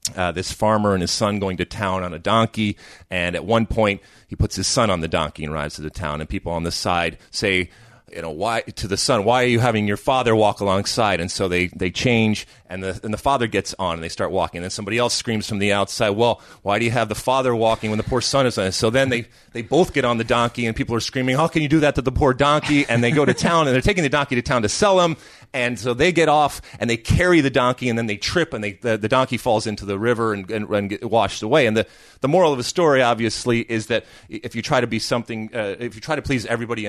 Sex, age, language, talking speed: male, 30-49, English, 290 wpm